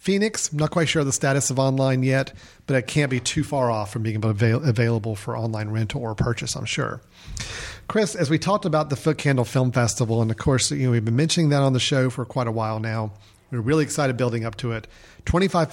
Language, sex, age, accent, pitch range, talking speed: English, male, 40-59, American, 115-140 Hz, 240 wpm